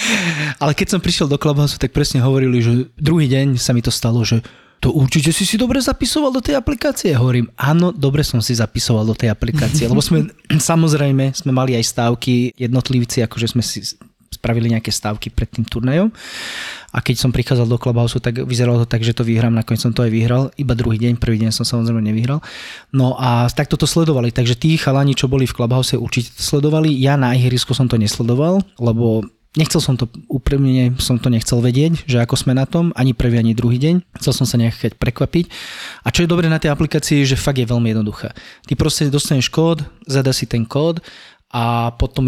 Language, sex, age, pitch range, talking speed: Slovak, male, 20-39, 115-140 Hz, 205 wpm